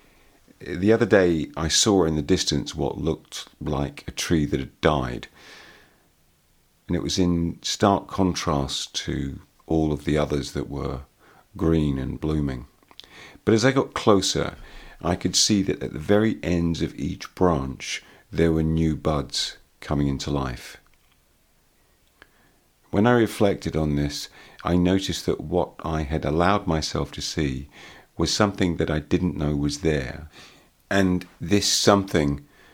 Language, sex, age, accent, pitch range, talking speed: English, male, 50-69, British, 75-90 Hz, 150 wpm